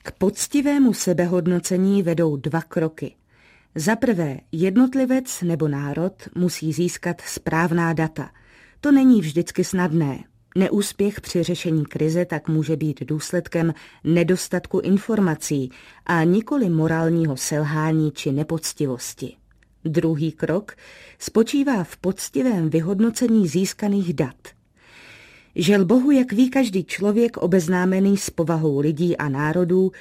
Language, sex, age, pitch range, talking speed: Czech, female, 30-49, 155-205 Hz, 110 wpm